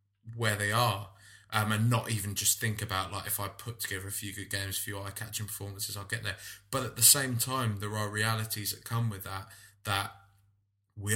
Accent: British